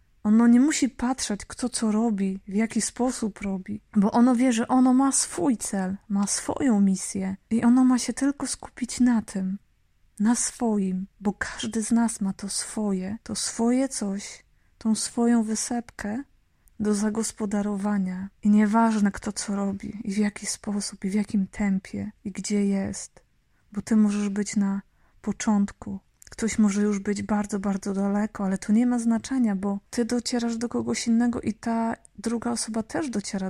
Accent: native